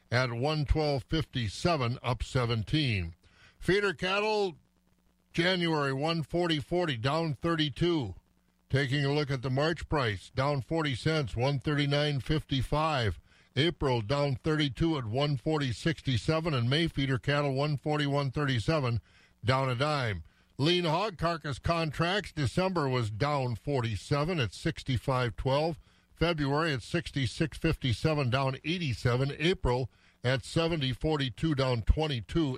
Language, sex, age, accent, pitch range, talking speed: English, male, 50-69, American, 125-165 Hz, 100 wpm